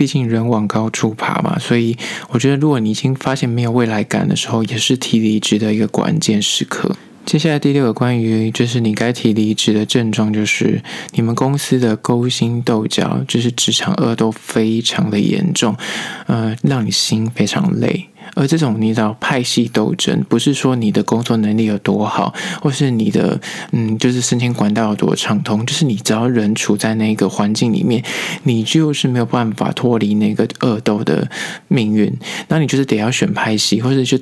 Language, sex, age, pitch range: Chinese, male, 20-39, 110-130 Hz